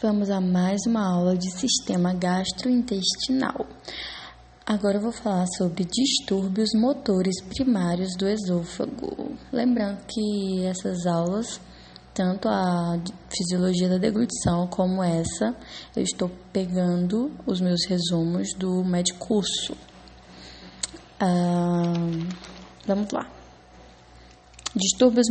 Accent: Brazilian